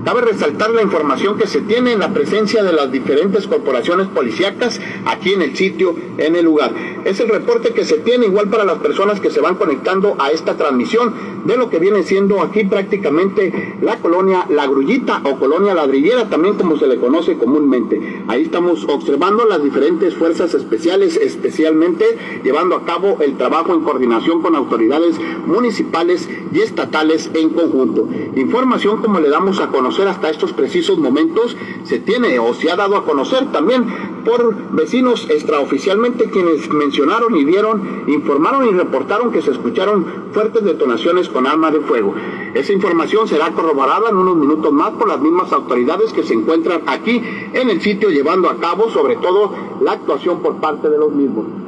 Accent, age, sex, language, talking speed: Mexican, 50-69, male, Spanish, 175 wpm